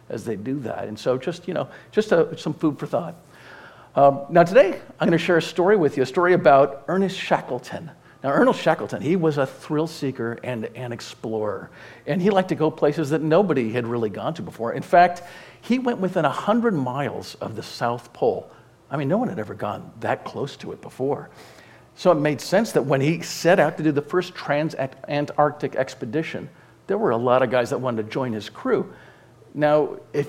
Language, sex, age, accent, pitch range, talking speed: English, male, 50-69, American, 120-175 Hz, 210 wpm